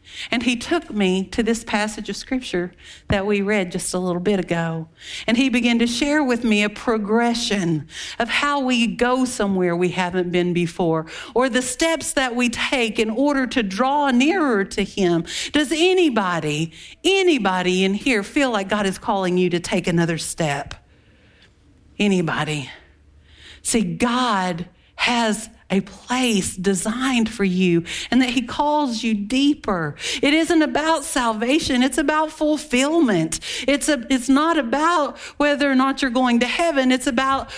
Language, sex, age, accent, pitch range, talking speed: English, female, 50-69, American, 200-290 Hz, 160 wpm